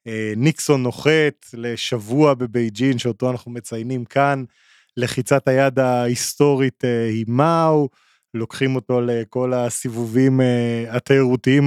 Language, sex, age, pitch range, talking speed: Hebrew, male, 20-39, 115-140 Hz, 95 wpm